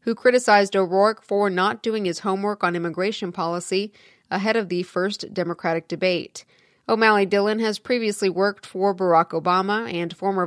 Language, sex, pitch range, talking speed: English, female, 180-210 Hz, 155 wpm